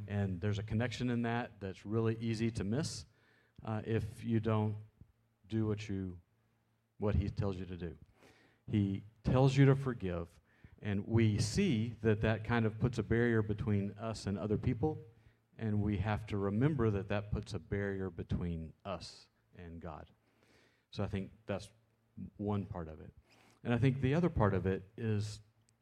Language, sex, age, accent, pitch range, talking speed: English, male, 40-59, American, 100-115 Hz, 170 wpm